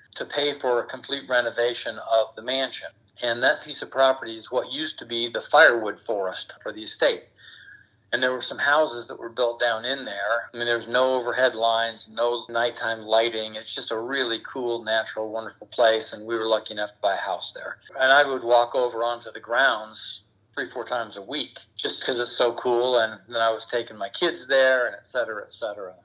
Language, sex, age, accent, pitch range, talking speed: English, male, 50-69, American, 110-130 Hz, 215 wpm